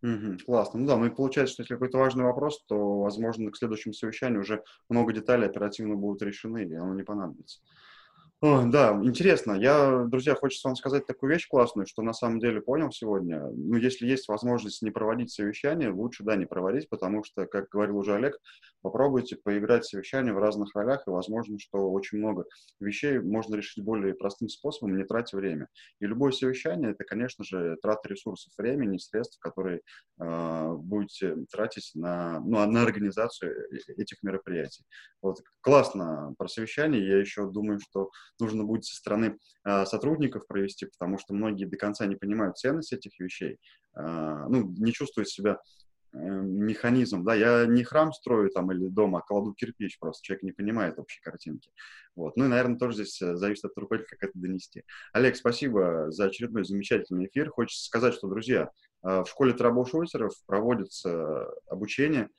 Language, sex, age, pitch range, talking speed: Russian, male, 20-39, 100-125 Hz, 170 wpm